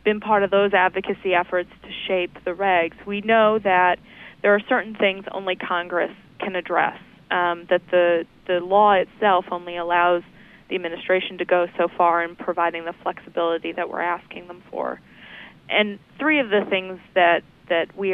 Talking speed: 170 wpm